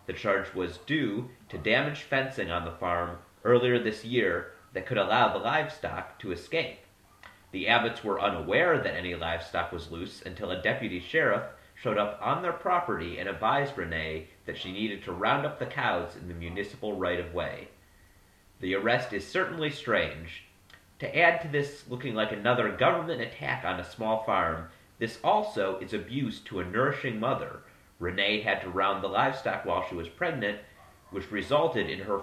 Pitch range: 90-120 Hz